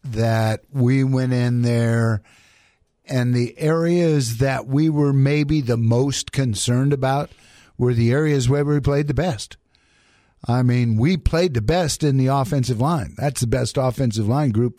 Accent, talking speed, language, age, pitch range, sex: American, 160 wpm, English, 50-69, 115-150 Hz, male